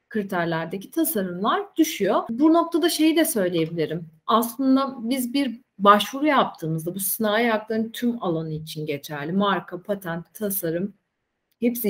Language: Turkish